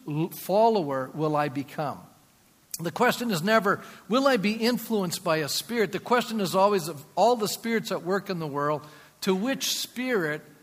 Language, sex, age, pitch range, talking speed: English, male, 50-69, 155-215 Hz, 175 wpm